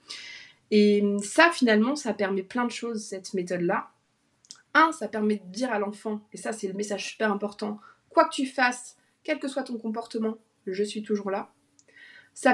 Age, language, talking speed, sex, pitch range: 20-39, French, 180 wpm, female, 210-255 Hz